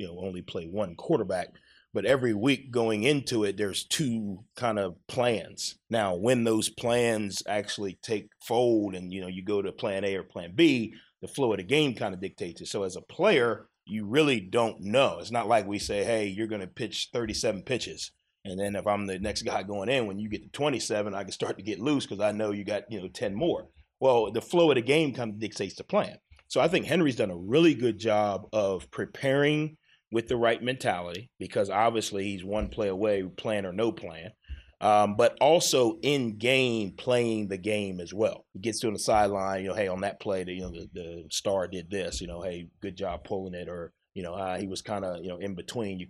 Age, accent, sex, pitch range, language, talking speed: 30-49, American, male, 95-115 Hz, English, 230 wpm